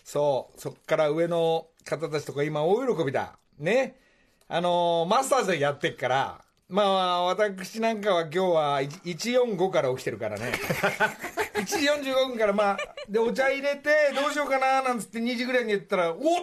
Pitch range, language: 140-205 Hz, Japanese